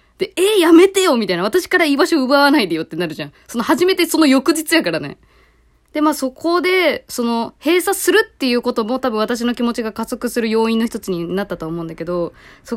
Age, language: 20-39, Japanese